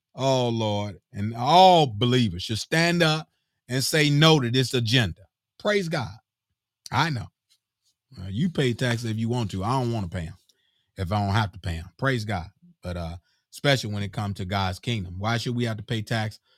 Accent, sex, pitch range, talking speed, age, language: American, male, 100-125 Hz, 205 wpm, 30-49, English